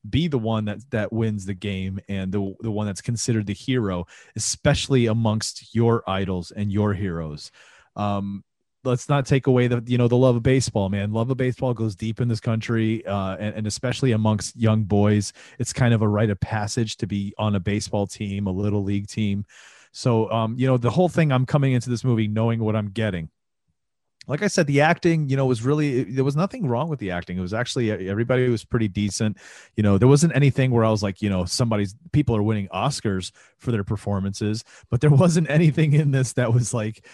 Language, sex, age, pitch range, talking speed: English, male, 30-49, 100-125 Hz, 220 wpm